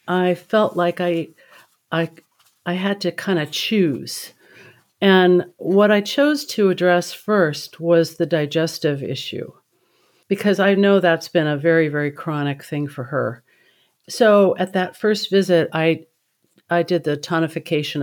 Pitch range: 155-190 Hz